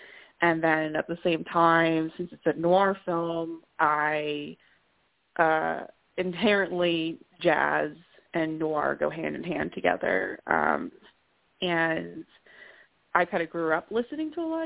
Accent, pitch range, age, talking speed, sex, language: American, 155-180 Hz, 20-39, 125 wpm, female, English